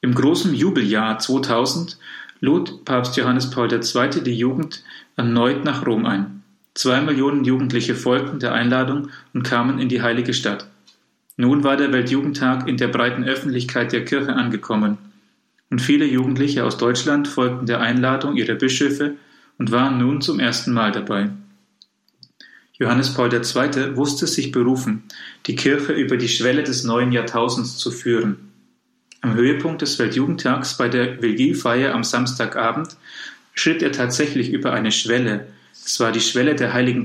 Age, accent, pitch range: 40-59, German, 120-140 Hz